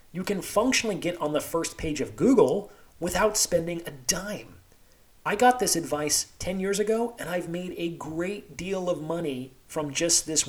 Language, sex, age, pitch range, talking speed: English, male, 30-49, 135-185 Hz, 185 wpm